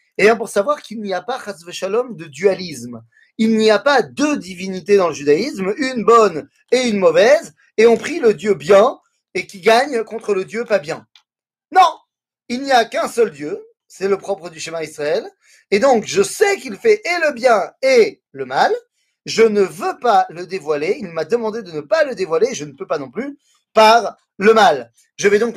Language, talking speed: French, 205 wpm